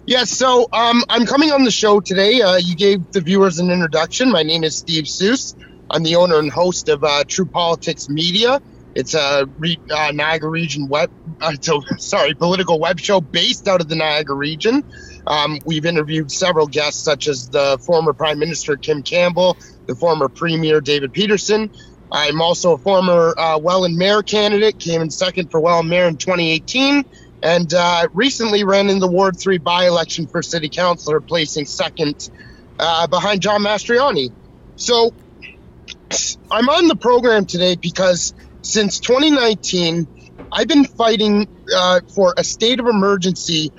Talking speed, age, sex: 165 wpm, 30-49, male